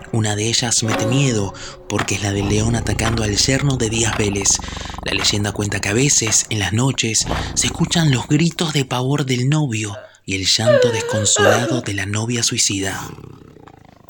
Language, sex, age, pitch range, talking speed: Spanish, male, 20-39, 100-130 Hz, 175 wpm